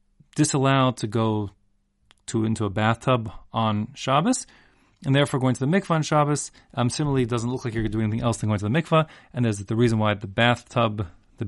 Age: 30-49